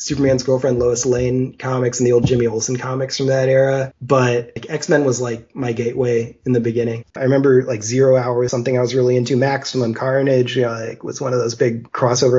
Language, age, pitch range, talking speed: English, 30-49, 120-135 Hz, 210 wpm